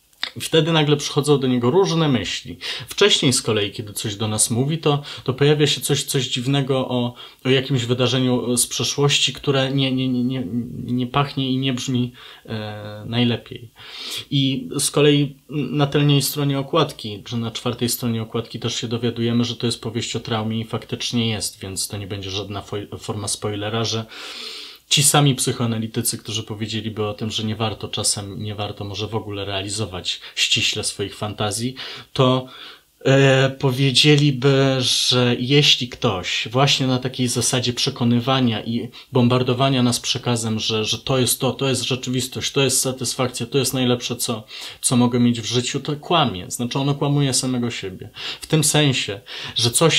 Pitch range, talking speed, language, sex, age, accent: 115-135 Hz, 170 wpm, Polish, male, 20-39, native